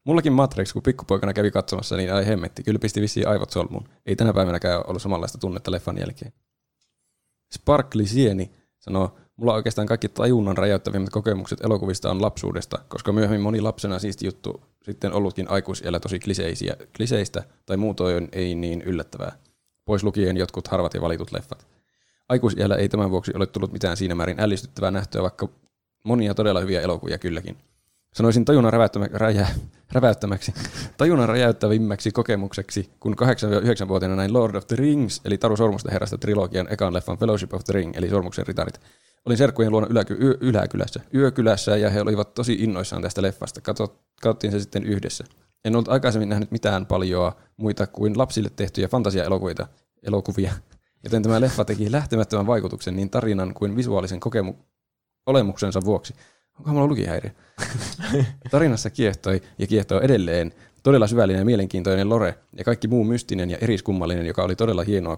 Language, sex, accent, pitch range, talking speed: Finnish, male, native, 95-115 Hz, 150 wpm